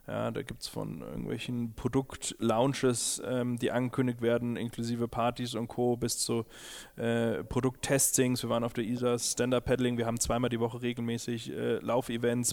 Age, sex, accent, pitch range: 20-39, male, German, 115-130 Hz